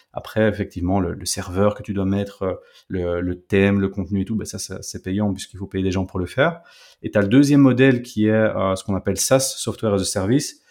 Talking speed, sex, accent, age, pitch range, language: 235 wpm, male, French, 30-49, 100-120 Hz, French